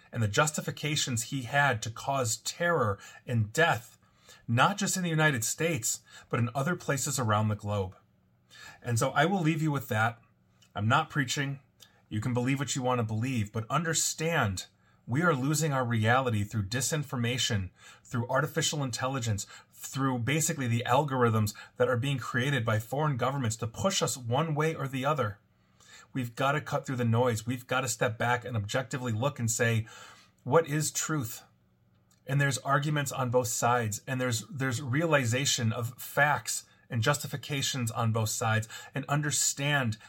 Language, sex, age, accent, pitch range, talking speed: English, male, 30-49, American, 115-145 Hz, 170 wpm